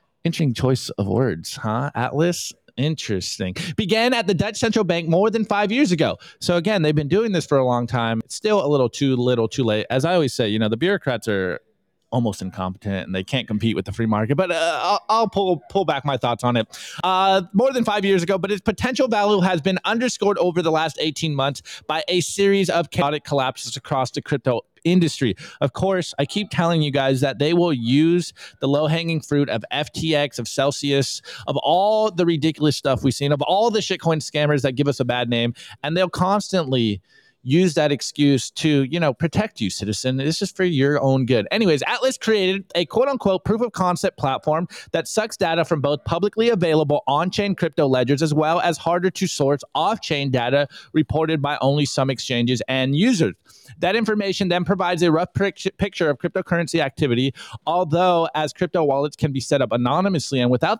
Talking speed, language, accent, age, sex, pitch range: 200 wpm, English, American, 20-39, male, 135-185 Hz